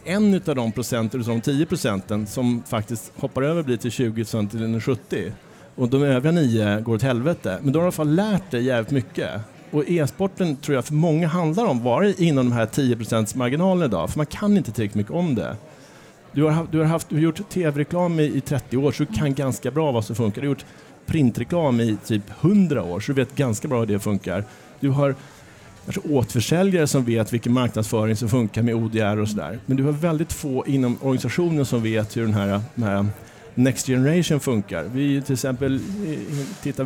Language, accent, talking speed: Swedish, Norwegian, 210 wpm